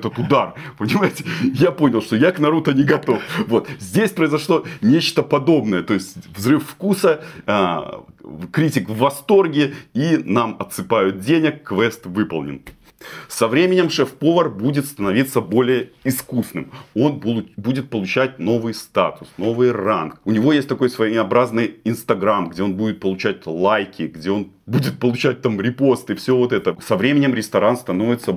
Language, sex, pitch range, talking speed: Russian, male, 95-140 Hz, 140 wpm